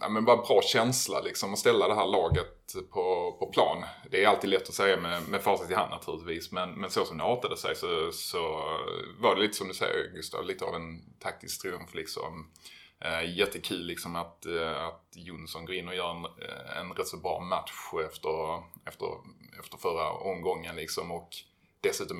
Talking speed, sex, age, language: 190 wpm, male, 20-39, Swedish